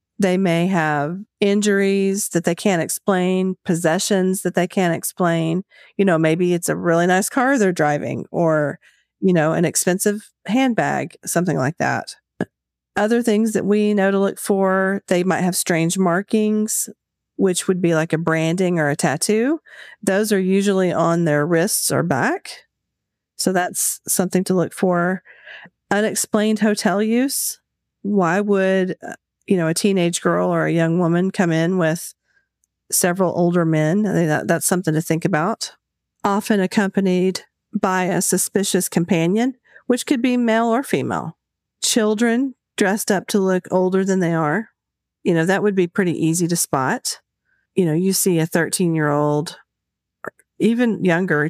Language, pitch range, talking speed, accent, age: English, 165-205 Hz, 155 wpm, American, 40-59